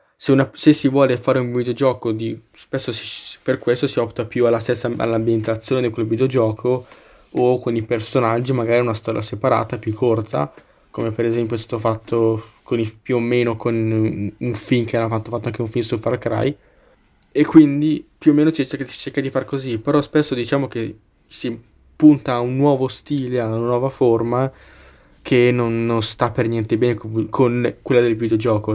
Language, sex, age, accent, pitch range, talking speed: Italian, male, 20-39, native, 110-130 Hz, 190 wpm